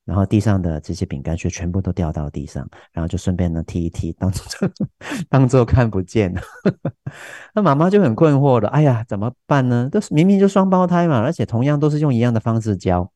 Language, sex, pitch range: Chinese, male, 90-135 Hz